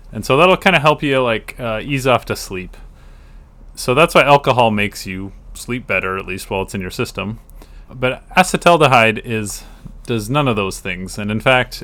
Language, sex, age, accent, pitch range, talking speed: English, male, 30-49, American, 95-130 Hz, 200 wpm